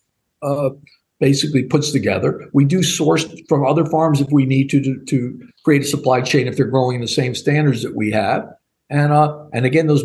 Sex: male